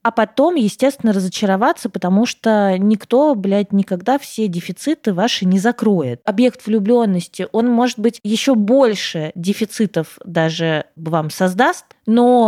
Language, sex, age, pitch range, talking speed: Russian, female, 20-39, 190-250 Hz, 125 wpm